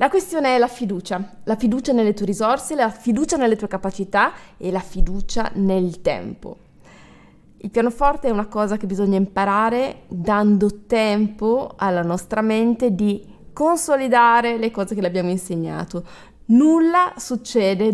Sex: female